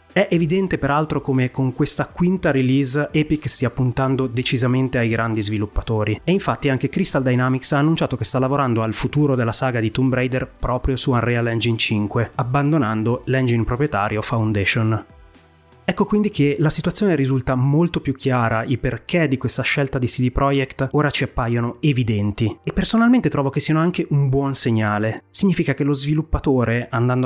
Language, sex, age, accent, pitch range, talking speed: Italian, male, 30-49, native, 115-150 Hz, 165 wpm